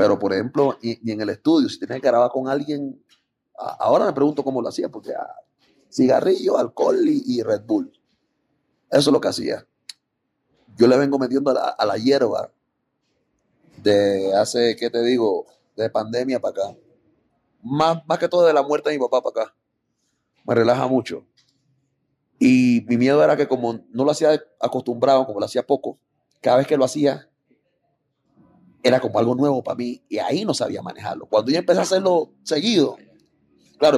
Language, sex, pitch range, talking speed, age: Spanish, male, 120-160 Hz, 180 wpm, 30-49